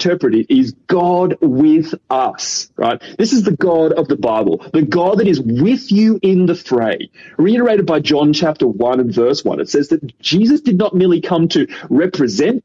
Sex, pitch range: male, 150-205 Hz